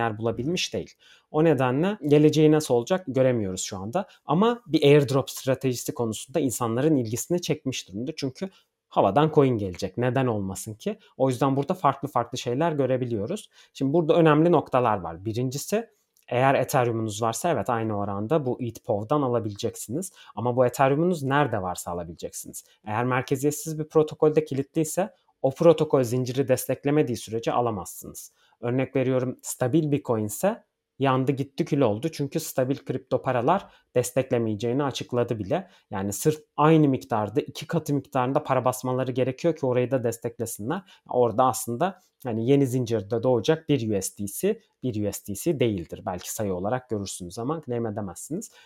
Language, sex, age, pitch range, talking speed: Turkish, male, 30-49, 115-150 Hz, 140 wpm